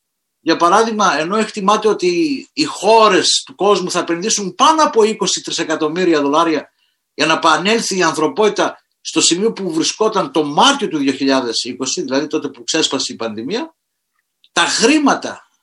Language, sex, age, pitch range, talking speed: Greek, male, 50-69, 160-260 Hz, 140 wpm